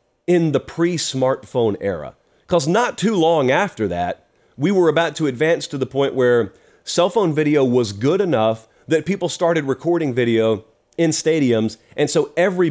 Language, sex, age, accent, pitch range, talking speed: English, male, 40-59, American, 120-170 Hz, 165 wpm